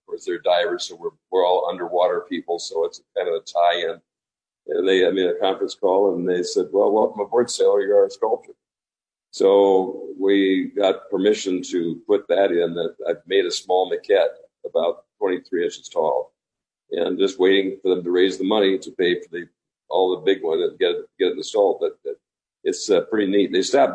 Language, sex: English, male